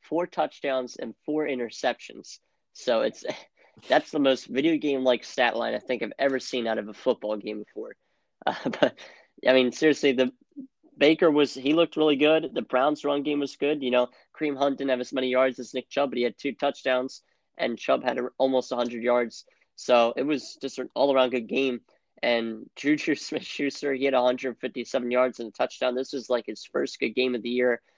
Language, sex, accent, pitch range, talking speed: English, male, American, 120-145 Hz, 210 wpm